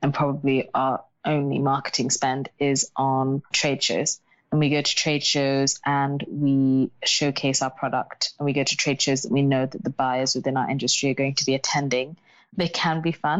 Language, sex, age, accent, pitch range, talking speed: English, female, 20-39, British, 135-150 Hz, 200 wpm